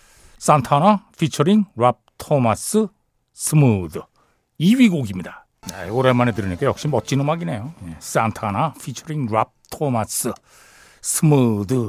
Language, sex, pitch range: Korean, male, 125-180 Hz